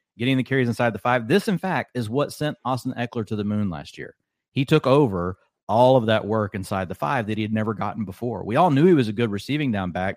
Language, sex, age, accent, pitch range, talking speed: English, male, 30-49, American, 100-125 Hz, 265 wpm